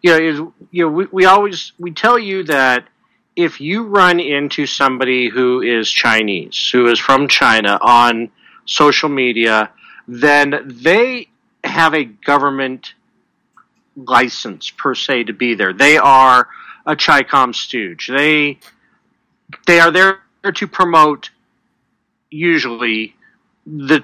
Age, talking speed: 40-59, 125 wpm